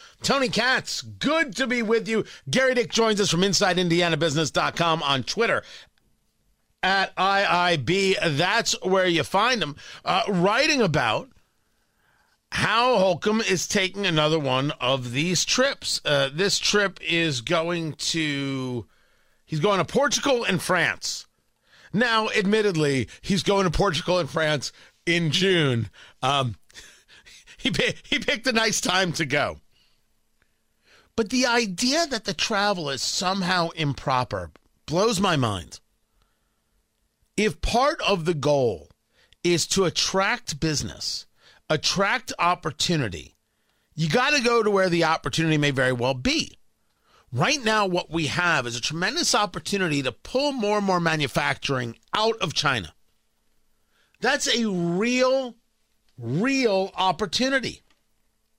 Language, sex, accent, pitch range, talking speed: English, male, American, 155-215 Hz, 125 wpm